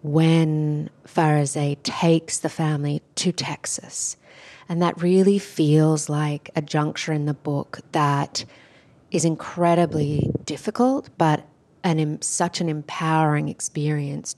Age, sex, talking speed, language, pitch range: 30-49, female, 115 wpm, English, 145-165 Hz